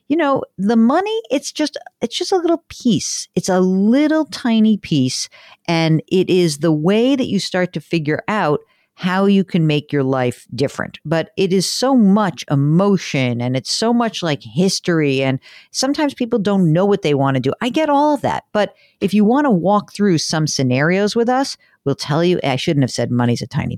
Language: English